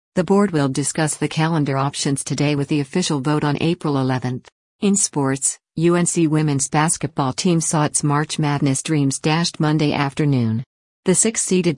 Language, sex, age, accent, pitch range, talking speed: English, female, 50-69, American, 140-165 Hz, 160 wpm